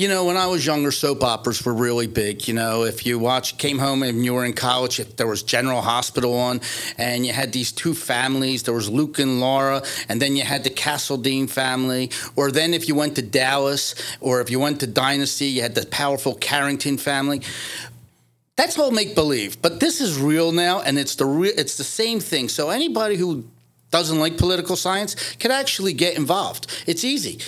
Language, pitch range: English, 130-190 Hz